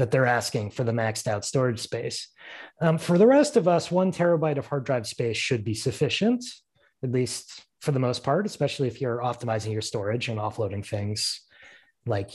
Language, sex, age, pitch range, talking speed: English, male, 30-49, 115-160 Hz, 195 wpm